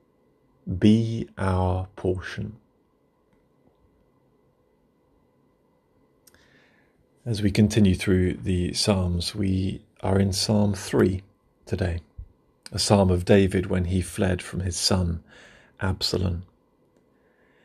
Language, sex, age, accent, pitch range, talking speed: English, male, 40-59, British, 95-110 Hz, 90 wpm